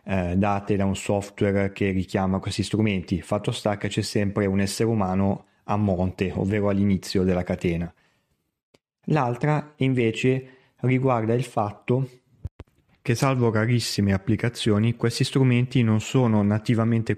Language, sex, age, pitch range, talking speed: Italian, male, 30-49, 100-115 Hz, 125 wpm